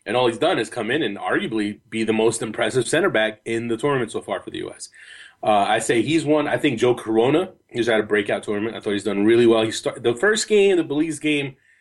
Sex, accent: male, American